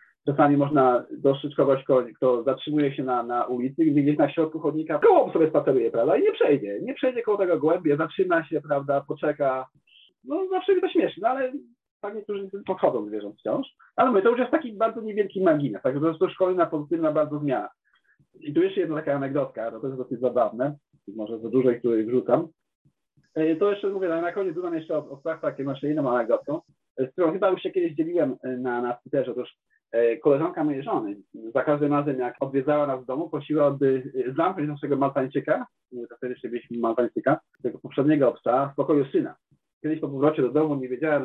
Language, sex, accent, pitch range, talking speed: Polish, male, native, 135-200 Hz, 190 wpm